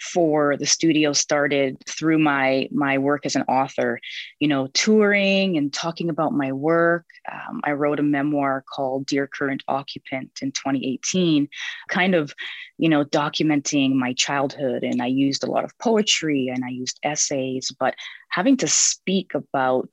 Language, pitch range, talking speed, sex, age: English, 130-165 Hz, 160 wpm, female, 20-39